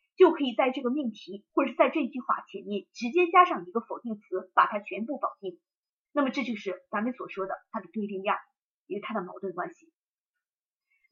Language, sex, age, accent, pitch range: Chinese, female, 30-49, native, 235-350 Hz